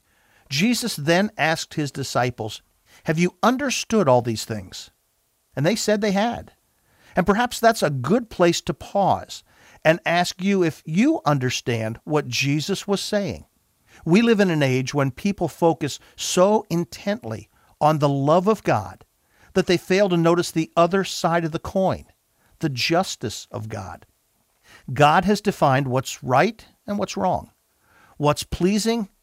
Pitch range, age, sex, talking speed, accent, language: 130-185 Hz, 50-69, male, 150 wpm, American, English